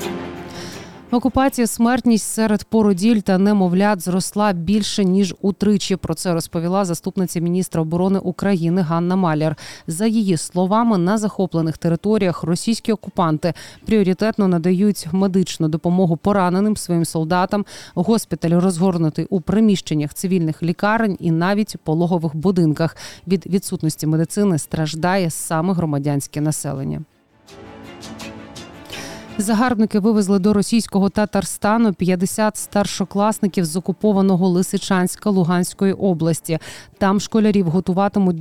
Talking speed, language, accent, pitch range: 105 wpm, Ukrainian, native, 165-200 Hz